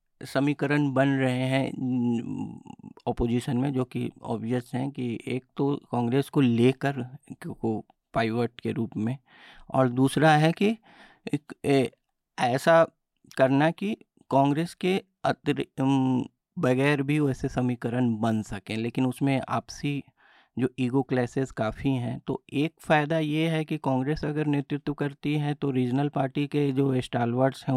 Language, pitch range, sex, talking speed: Hindi, 125-150 Hz, male, 135 wpm